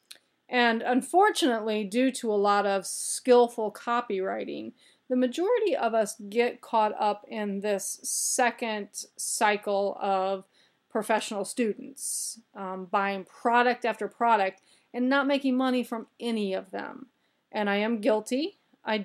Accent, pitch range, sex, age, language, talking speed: American, 200-250 Hz, female, 30-49, English, 130 wpm